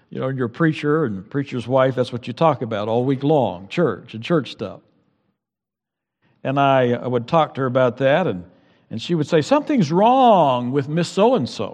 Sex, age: male, 60-79